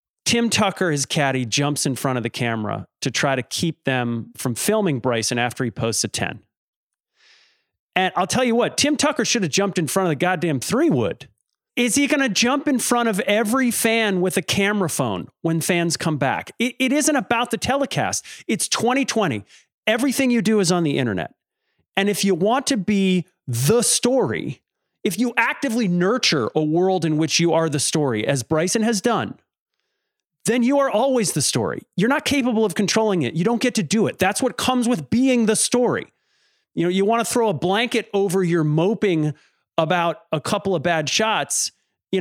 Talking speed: 200 wpm